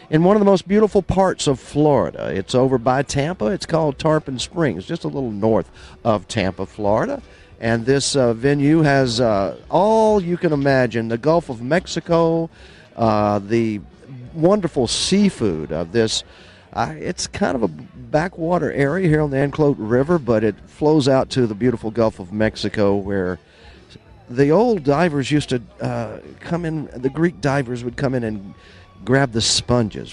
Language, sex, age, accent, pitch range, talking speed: English, male, 50-69, American, 105-155 Hz, 170 wpm